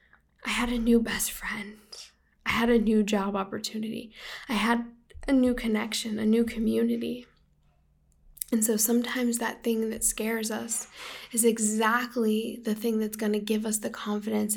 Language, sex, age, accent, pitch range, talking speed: English, female, 10-29, American, 205-230 Hz, 160 wpm